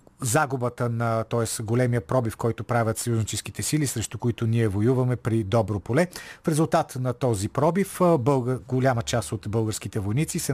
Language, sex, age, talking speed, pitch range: Bulgarian, male, 40-59, 160 wpm, 110-145 Hz